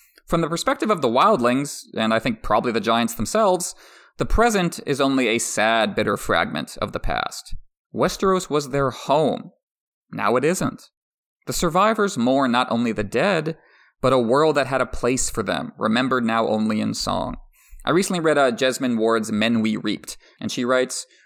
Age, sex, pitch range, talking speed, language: 30-49, male, 115-170 Hz, 180 wpm, English